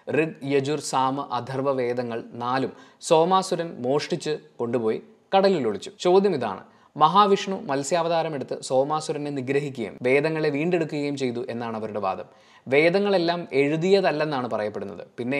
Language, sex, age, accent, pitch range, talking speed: Malayalam, male, 20-39, native, 125-160 Hz, 105 wpm